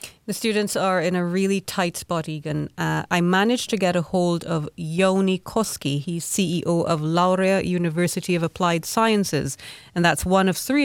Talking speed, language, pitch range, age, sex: 175 wpm, Finnish, 155-200 Hz, 30-49, female